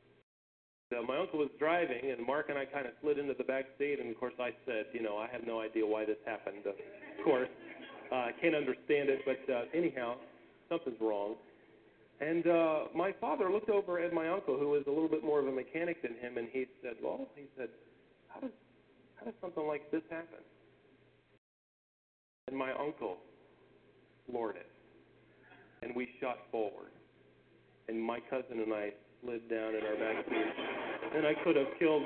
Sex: male